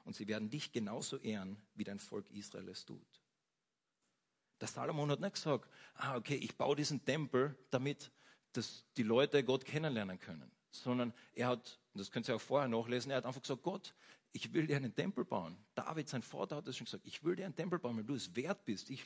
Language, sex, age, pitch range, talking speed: German, male, 40-59, 115-150 Hz, 220 wpm